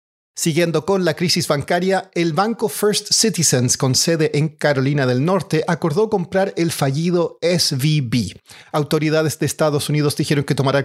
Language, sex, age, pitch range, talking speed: Spanish, male, 40-59, 145-175 Hz, 150 wpm